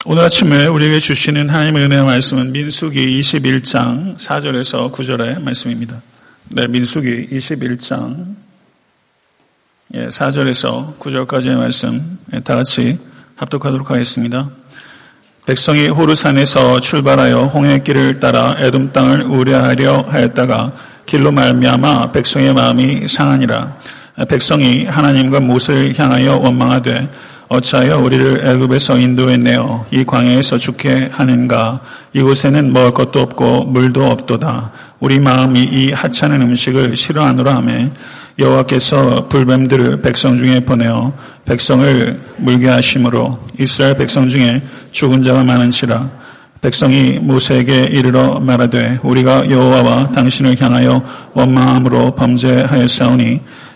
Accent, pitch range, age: native, 125-135 Hz, 40-59